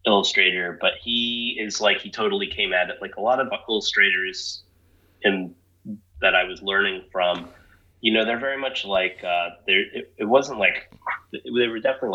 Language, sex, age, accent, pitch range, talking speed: English, male, 30-49, American, 90-120 Hz, 180 wpm